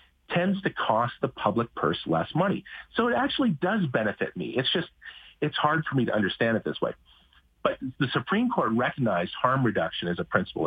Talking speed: 195 wpm